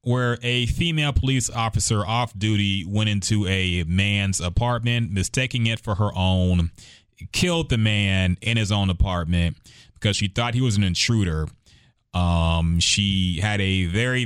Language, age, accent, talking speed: English, 30-49, American, 150 wpm